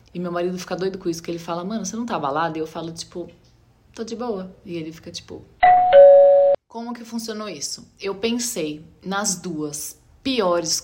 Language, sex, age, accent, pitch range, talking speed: Portuguese, female, 20-39, Brazilian, 170-230 Hz, 195 wpm